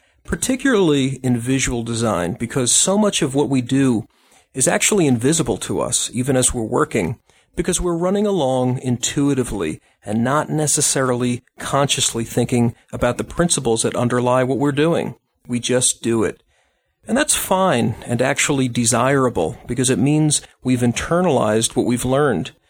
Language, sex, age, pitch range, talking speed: English, male, 40-59, 120-140 Hz, 150 wpm